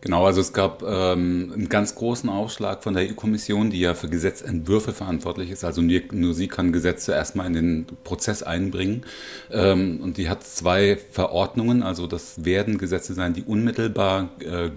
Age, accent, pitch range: 40-59, German, 85-100 Hz